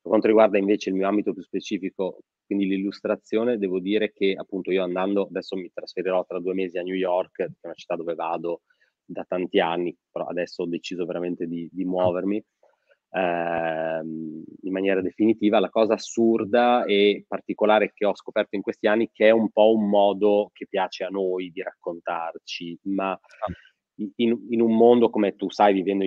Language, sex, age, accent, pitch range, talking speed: Italian, male, 30-49, native, 90-105 Hz, 185 wpm